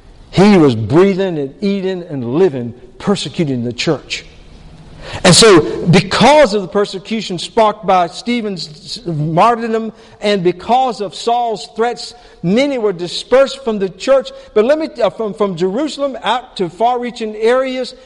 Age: 50-69